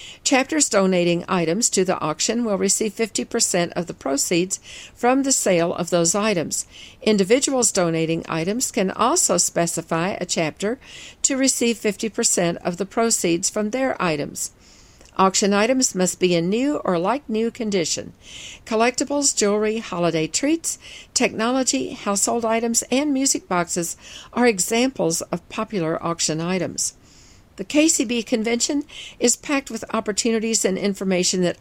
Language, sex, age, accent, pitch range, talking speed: English, female, 50-69, American, 175-235 Hz, 135 wpm